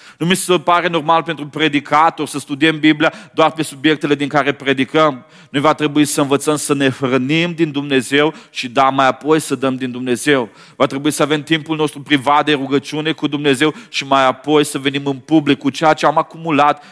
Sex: male